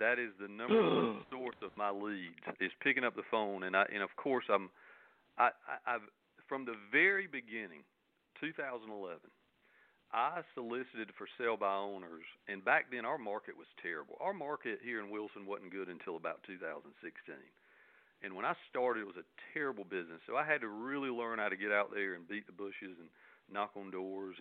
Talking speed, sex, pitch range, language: 195 wpm, male, 100-120 Hz, English